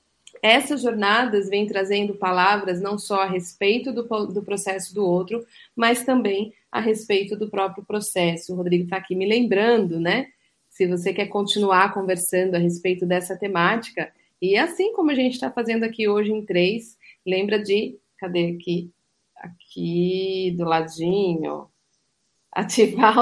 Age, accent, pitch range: 30-49, Brazilian, 180-210 Hz